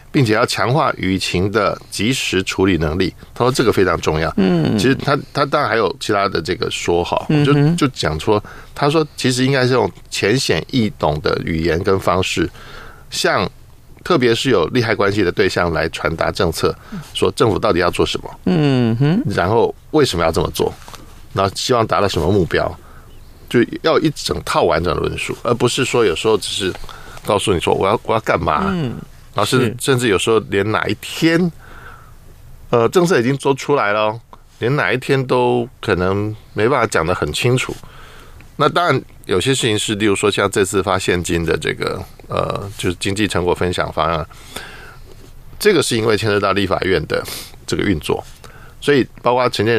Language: Chinese